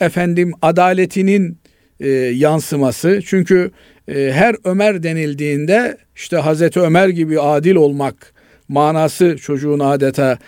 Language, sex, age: Turkish, male, 50-69